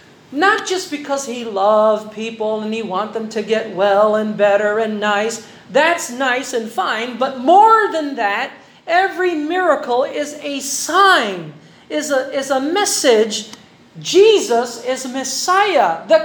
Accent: American